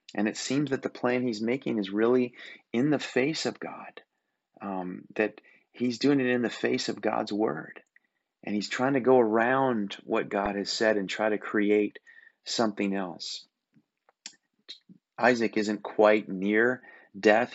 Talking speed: 160 wpm